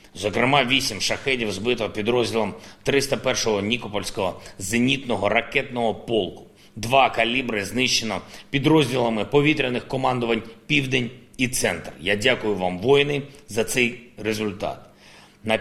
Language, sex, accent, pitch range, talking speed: Ukrainian, male, native, 110-140 Hz, 105 wpm